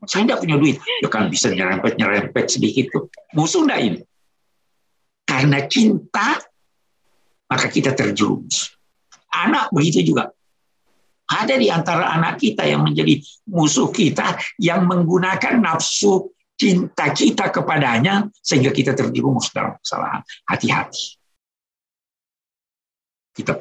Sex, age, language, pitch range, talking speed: male, 60-79, Indonesian, 140-230 Hz, 105 wpm